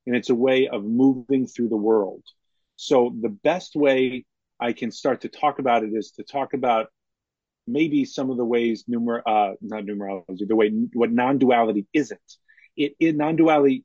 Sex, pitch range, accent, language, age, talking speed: male, 110-135 Hz, American, English, 30-49, 165 wpm